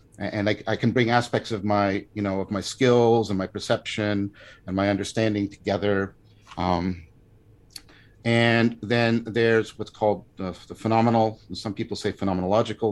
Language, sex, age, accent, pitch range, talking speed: English, male, 50-69, American, 100-115 Hz, 155 wpm